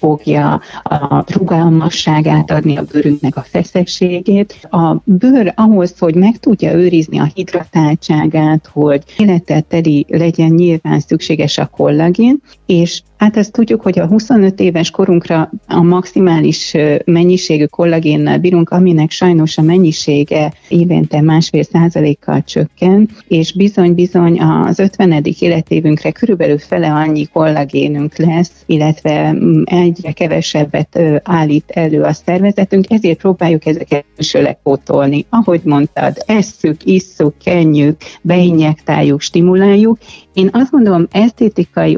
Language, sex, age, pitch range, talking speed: Hungarian, female, 40-59, 155-190 Hz, 115 wpm